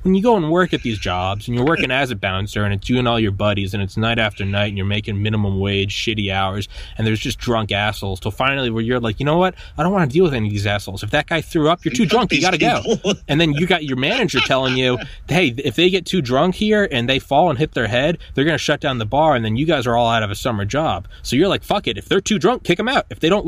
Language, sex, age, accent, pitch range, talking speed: English, male, 20-39, American, 100-155 Hz, 315 wpm